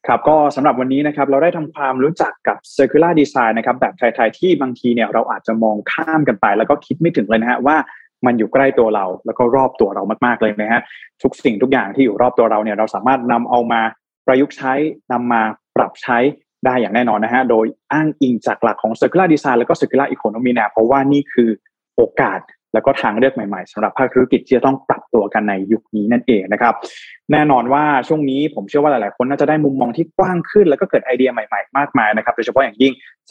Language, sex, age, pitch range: Thai, male, 20-39, 115-150 Hz